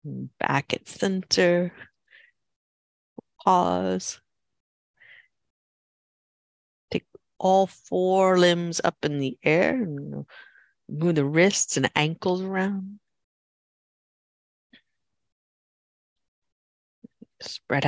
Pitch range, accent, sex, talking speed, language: 145-195 Hz, American, female, 65 wpm, English